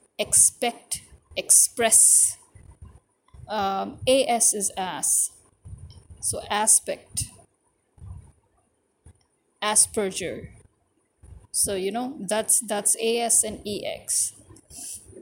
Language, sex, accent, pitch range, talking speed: English, female, Indian, 200-245 Hz, 65 wpm